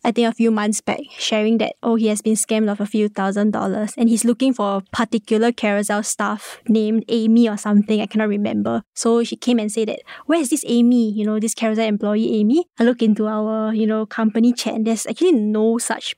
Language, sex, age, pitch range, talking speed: English, female, 20-39, 215-240 Hz, 230 wpm